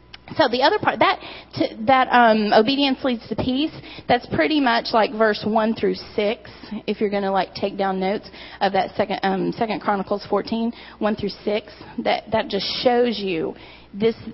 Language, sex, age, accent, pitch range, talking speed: English, female, 30-49, American, 210-260 Hz, 185 wpm